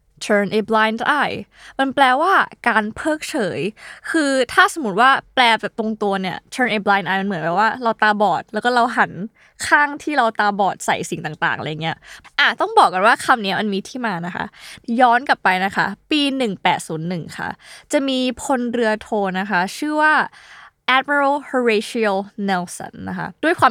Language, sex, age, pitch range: Thai, female, 20-39, 200-270 Hz